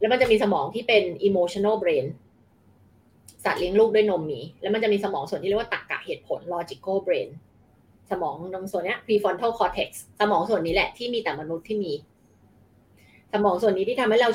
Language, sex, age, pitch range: Thai, female, 20-39, 155-245 Hz